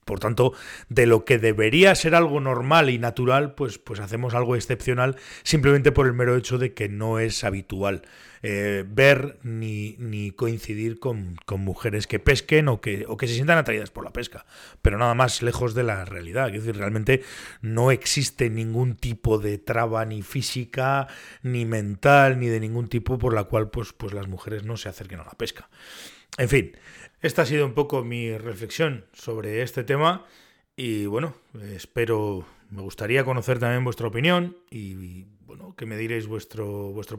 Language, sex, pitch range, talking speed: Spanish, male, 110-130 Hz, 175 wpm